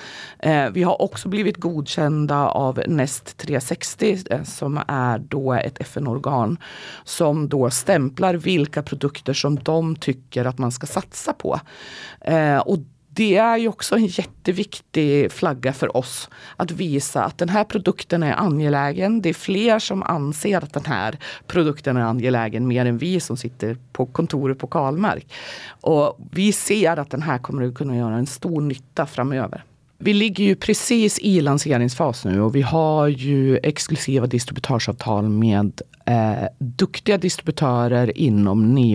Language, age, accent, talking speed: Swedish, 30-49, native, 150 wpm